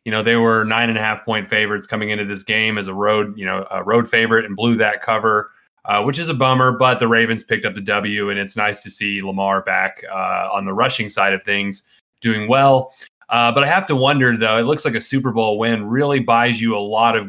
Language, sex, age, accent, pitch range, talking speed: English, male, 30-49, American, 110-135 Hz, 255 wpm